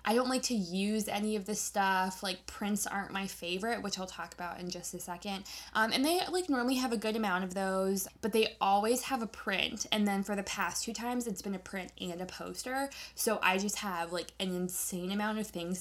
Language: English